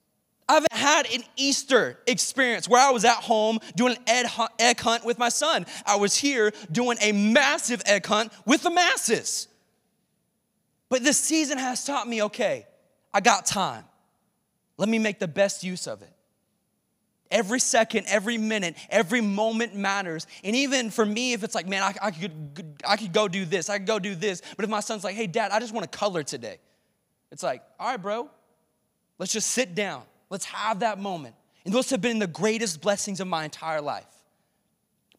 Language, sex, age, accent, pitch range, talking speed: English, male, 20-39, American, 205-255 Hz, 190 wpm